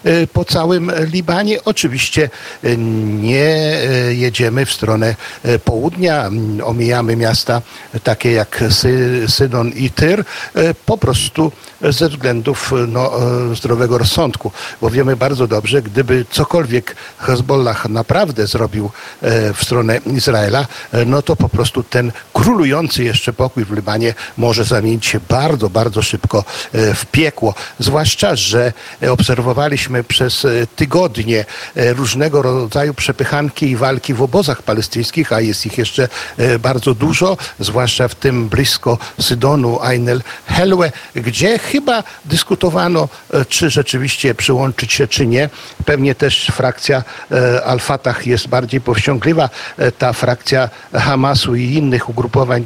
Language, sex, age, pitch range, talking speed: Polish, male, 50-69, 120-145 Hz, 115 wpm